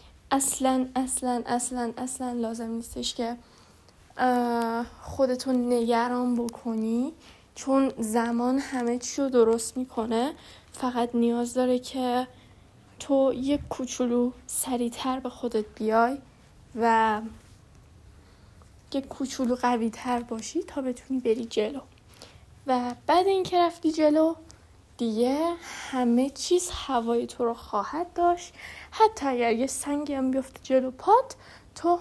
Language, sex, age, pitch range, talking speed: Persian, female, 10-29, 240-275 Hz, 110 wpm